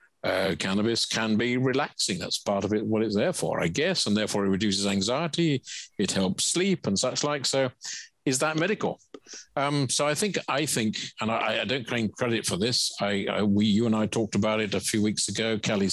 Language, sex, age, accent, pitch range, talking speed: English, male, 50-69, British, 100-130 Hz, 220 wpm